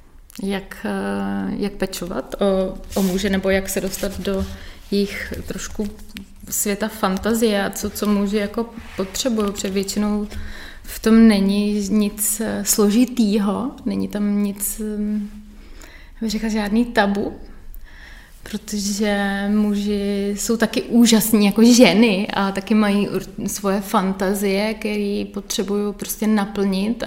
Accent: native